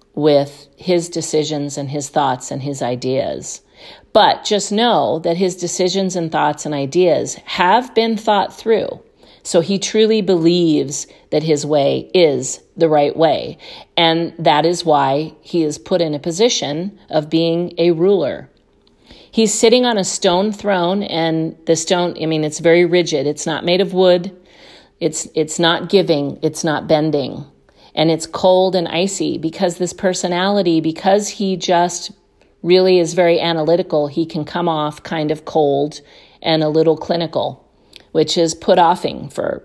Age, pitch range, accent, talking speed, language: 40-59, 155-185 Hz, American, 155 wpm, English